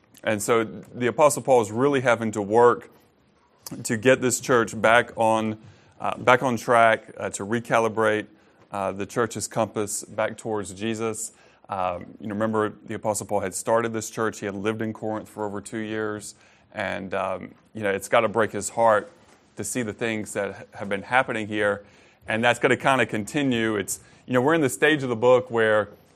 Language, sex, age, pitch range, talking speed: English, male, 30-49, 105-120 Hz, 200 wpm